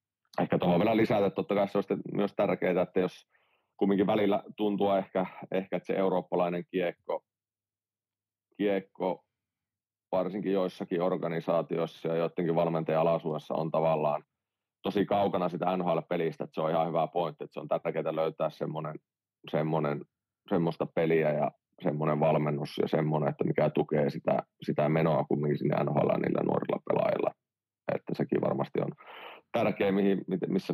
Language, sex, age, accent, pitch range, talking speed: Finnish, male, 30-49, native, 80-100 Hz, 140 wpm